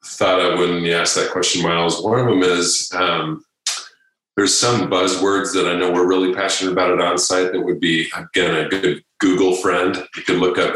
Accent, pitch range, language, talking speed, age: American, 90-95 Hz, English, 205 wpm, 40-59